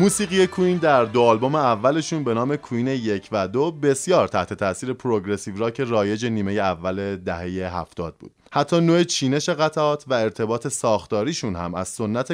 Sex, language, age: male, Persian, 20-39